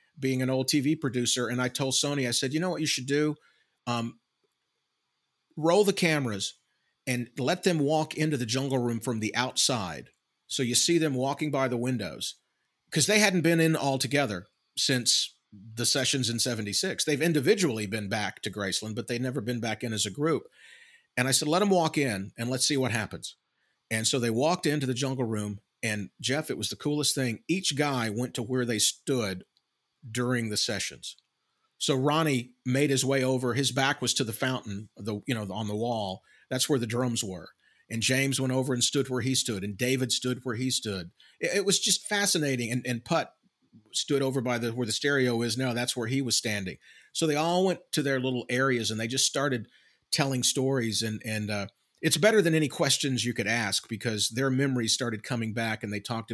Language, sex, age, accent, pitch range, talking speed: English, male, 40-59, American, 115-145 Hz, 210 wpm